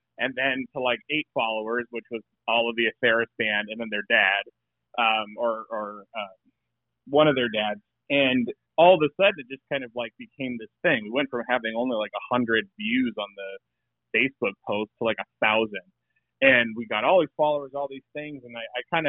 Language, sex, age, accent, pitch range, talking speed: English, male, 30-49, American, 115-145 Hz, 210 wpm